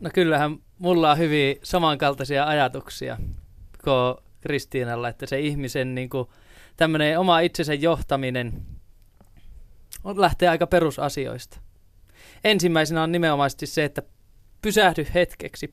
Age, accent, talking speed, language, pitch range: 20-39, native, 105 wpm, Finnish, 135-175 Hz